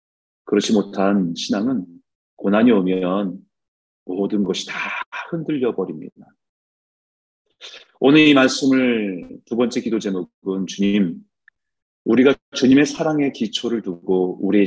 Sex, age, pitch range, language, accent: male, 40-59, 95-150 Hz, Korean, native